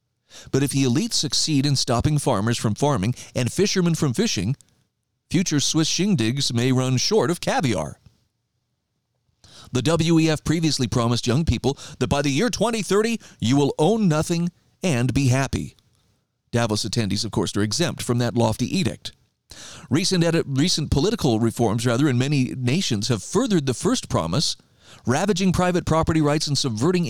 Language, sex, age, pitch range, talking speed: English, male, 40-59, 120-170 Hz, 155 wpm